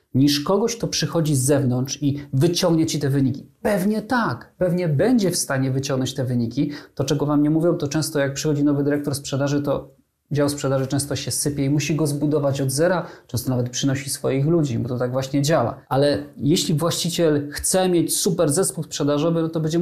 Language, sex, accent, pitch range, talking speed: Polish, male, native, 135-170 Hz, 195 wpm